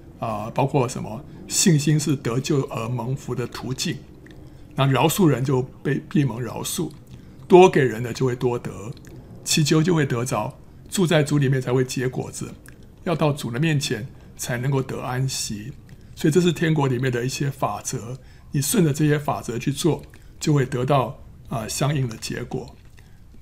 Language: Chinese